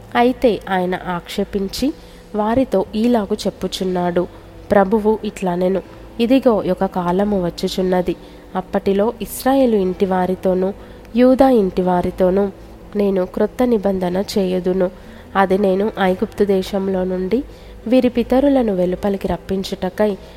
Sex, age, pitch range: female, 20-39, 185-220 Hz